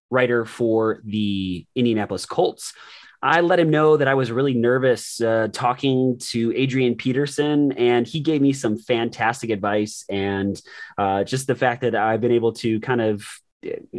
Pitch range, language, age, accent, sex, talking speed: 110-130 Hz, English, 20-39, American, male, 165 wpm